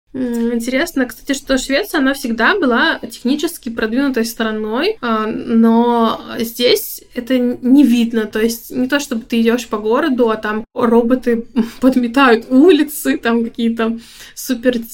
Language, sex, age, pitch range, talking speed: Russian, female, 20-39, 230-255 Hz, 130 wpm